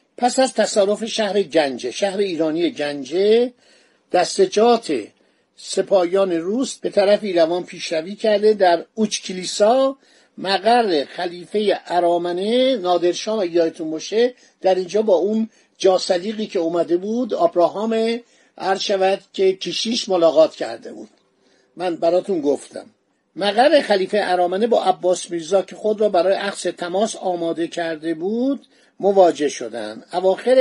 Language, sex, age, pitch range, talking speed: Persian, male, 50-69, 185-245 Hz, 120 wpm